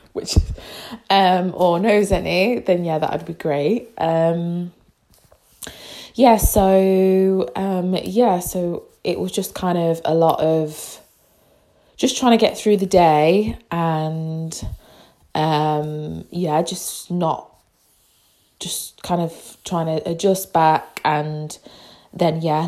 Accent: British